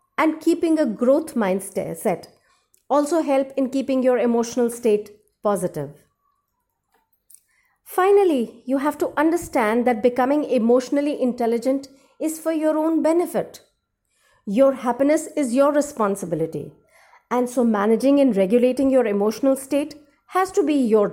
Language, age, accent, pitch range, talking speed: English, 50-69, Indian, 220-295 Hz, 130 wpm